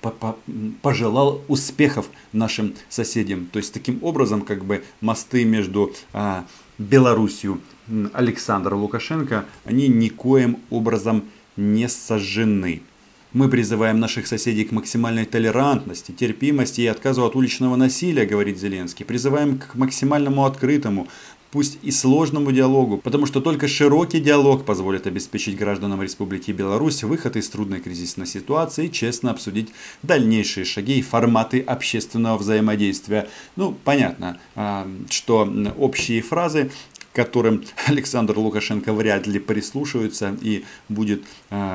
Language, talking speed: Russian, 120 wpm